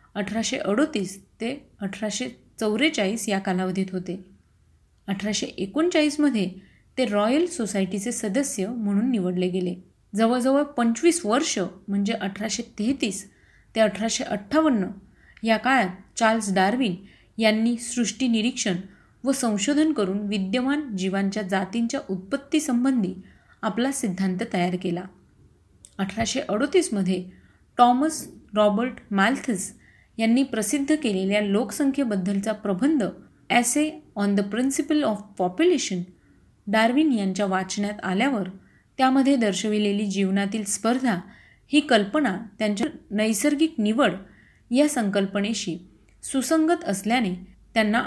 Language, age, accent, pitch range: Marathi, 30-49, native, 195-260 Hz